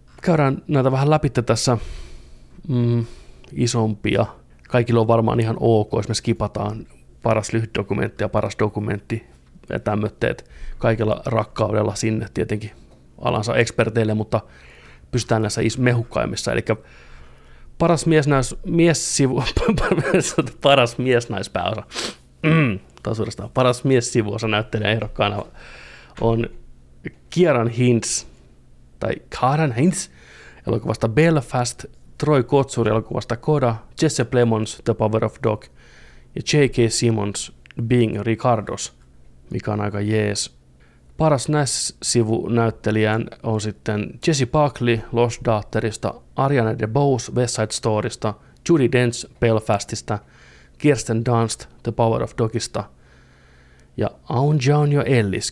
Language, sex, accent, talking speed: Finnish, male, native, 105 wpm